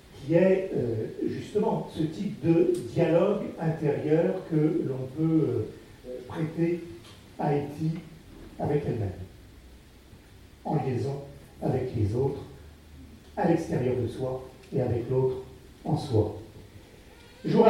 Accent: French